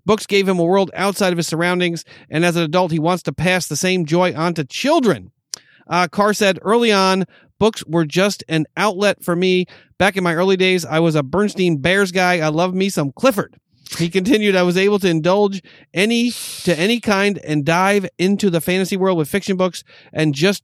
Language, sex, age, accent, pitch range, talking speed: English, male, 40-59, American, 165-200 Hz, 210 wpm